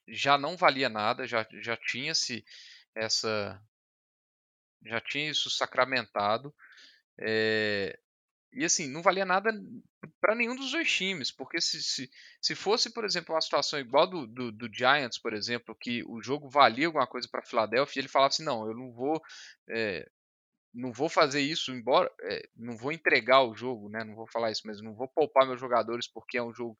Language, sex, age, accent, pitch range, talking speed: Portuguese, male, 10-29, Brazilian, 110-165 Hz, 180 wpm